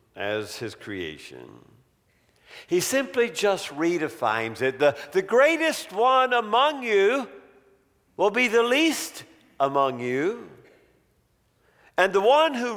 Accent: American